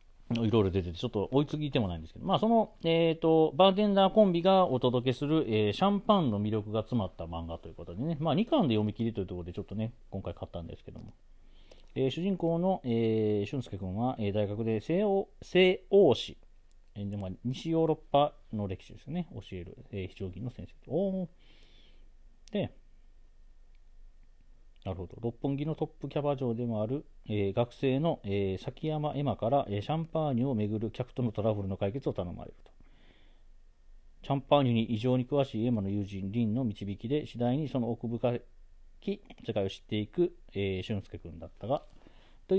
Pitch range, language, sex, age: 95-150 Hz, Japanese, male, 40-59